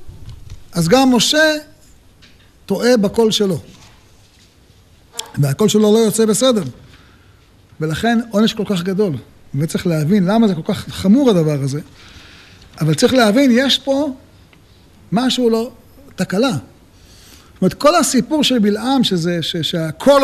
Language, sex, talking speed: Hebrew, male, 115 wpm